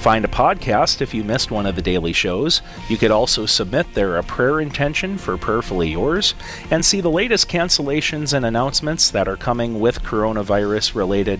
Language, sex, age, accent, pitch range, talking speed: English, male, 40-59, American, 100-140 Hz, 180 wpm